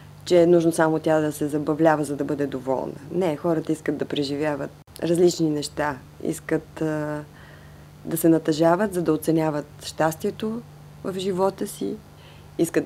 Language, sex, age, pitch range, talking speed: Bulgarian, female, 20-39, 145-170 Hz, 150 wpm